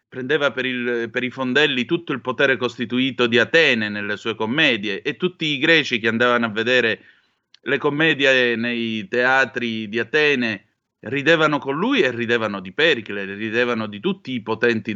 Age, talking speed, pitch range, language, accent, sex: 30-49, 160 wpm, 115-150 Hz, Italian, native, male